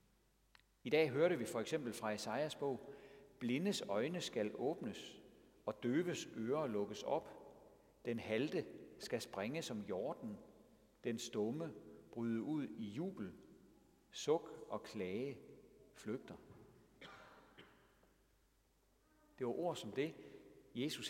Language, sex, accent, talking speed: Danish, male, native, 115 wpm